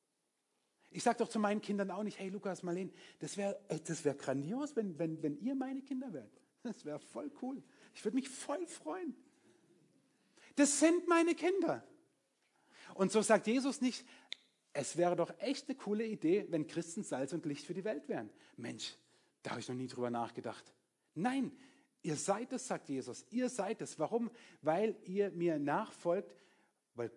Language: German